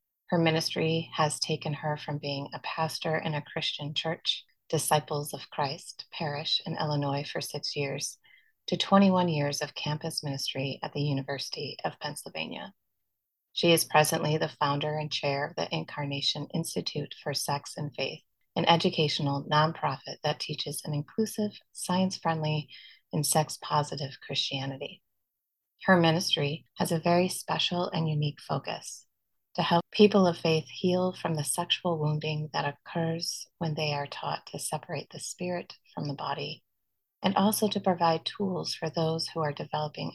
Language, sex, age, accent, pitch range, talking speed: English, female, 30-49, American, 145-170 Hz, 150 wpm